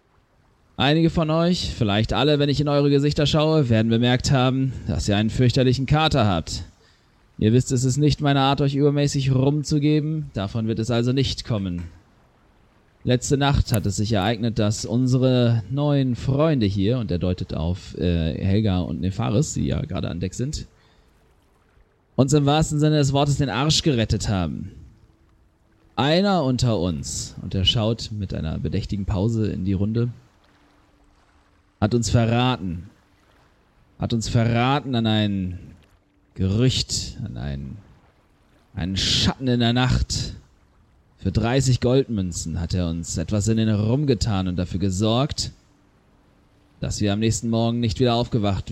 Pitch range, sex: 95-130 Hz, male